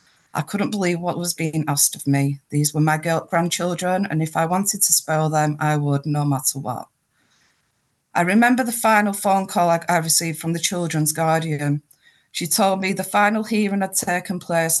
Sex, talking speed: female, 190 wpm